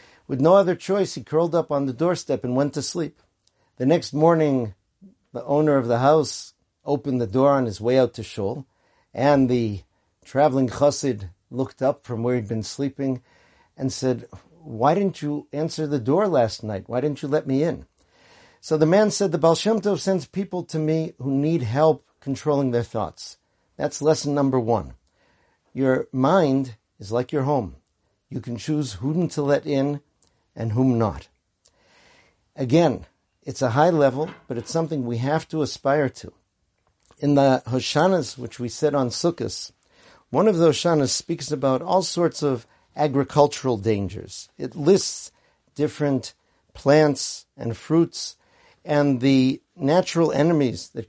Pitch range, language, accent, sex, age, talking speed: 120-150 Hz, English, American, male, 50-69, 160 wpm